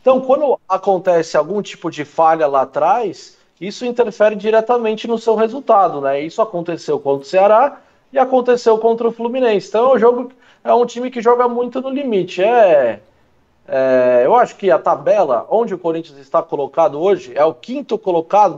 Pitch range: 160-220 Hz